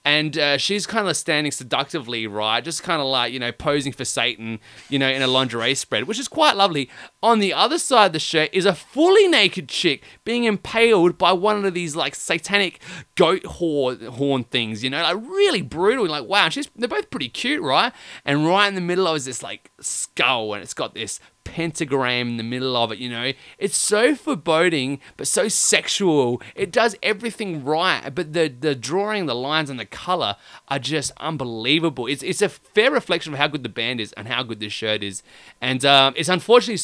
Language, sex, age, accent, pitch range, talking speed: English, male, 20-39, Australian, 125-195 Hz, 210 wpm